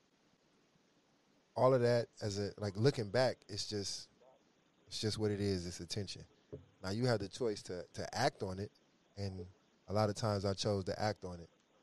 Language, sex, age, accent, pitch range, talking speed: English, male, 20-39, American, 95-115 Hz, 195 wpm